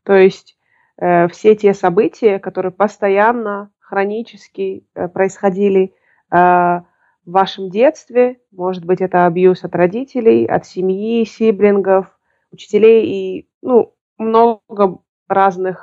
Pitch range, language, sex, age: 180-200 Hz, Russian, female, 20-39